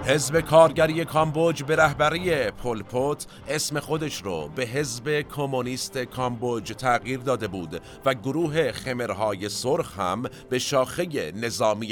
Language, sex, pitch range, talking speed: Persian, male, 110-140 Hz, 120 wpm